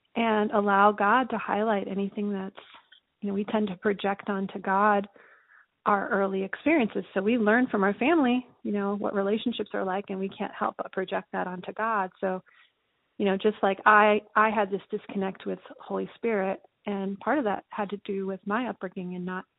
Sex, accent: female, American